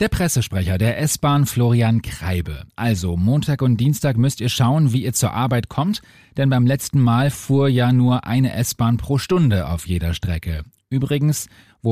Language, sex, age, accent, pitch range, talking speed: German, male, 30-49, German, 105-140 Hz, 170 wpm